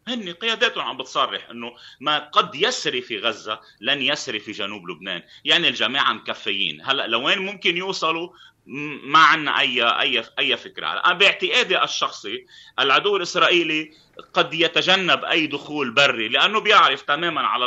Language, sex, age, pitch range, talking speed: Arabic, male, 30-49, 125-190 Hz, 145 wpm